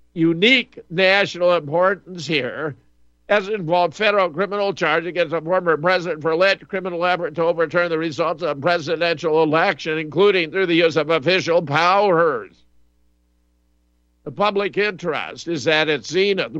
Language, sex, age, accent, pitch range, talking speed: English, male, 50-69, American, 145-180 Hz, 140 wpm